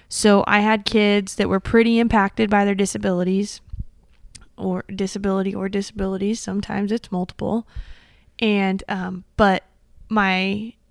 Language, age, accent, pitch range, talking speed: English, 20-39, American, 190-220 Hz, 120 wpm